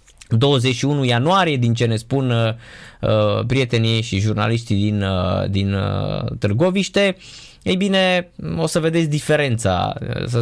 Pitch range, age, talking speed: 115-155 Hz, 20-39, 110 wpm